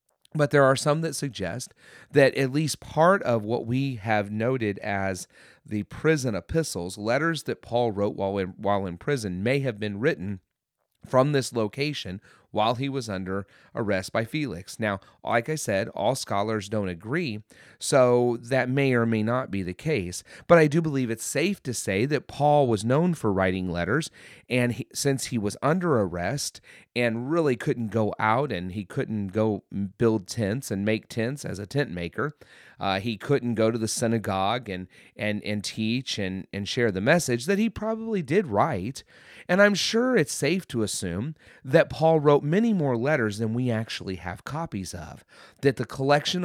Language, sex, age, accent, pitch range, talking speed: English, male, 30-49, American, 100-140 Hz, 180 wpm